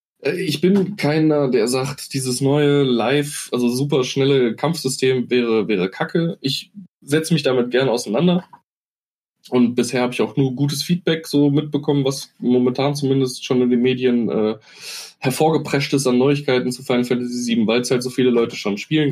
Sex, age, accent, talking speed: male, 20-39, German, 175 wpm